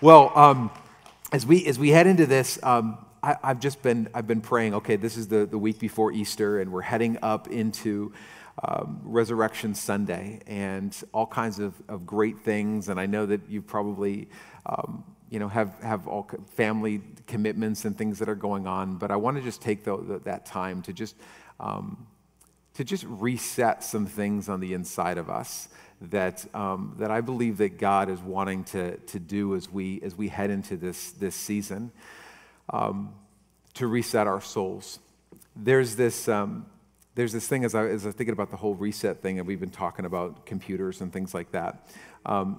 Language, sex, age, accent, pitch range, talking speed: English, male, 40-59, American, 100-115 Hz, 185 wpm